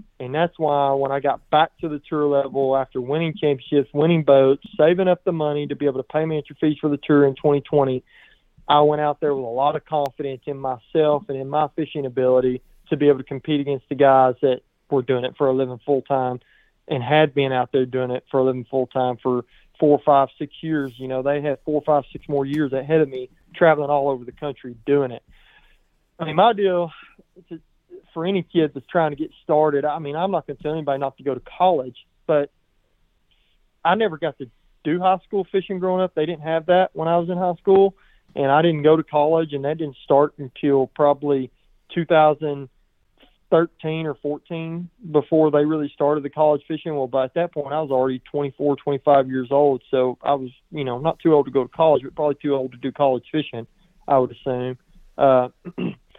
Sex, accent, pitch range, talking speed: male, American, 135-160 Hz, 225 wpm